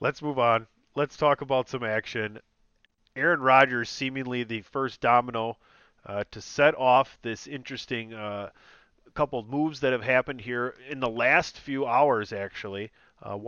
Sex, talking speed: male, 155 wpm